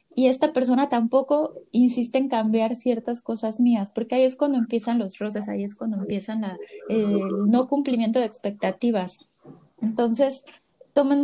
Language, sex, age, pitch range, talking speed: Spanish, female, 20-39, 210-255 Hz, 155 wpm